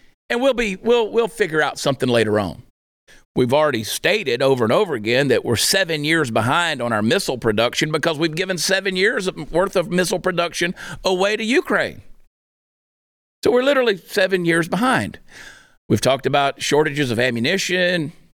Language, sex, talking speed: English, male, 165 wpm